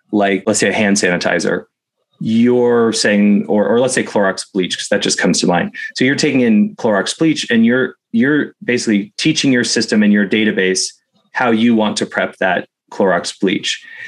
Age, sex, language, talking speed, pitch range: 30-49, male, English, 190 wpm, 100-145 Hz